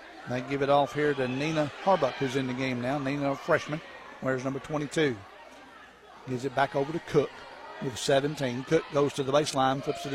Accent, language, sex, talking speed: American, English, male, 200 wpm